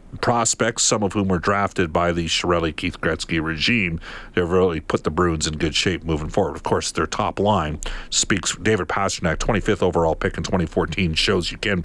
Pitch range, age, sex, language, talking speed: 90-115 Hz, 50-69, male, English, 180 wpm